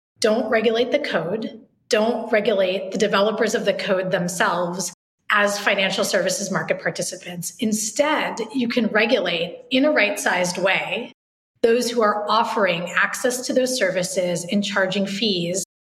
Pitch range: 185-240 Hz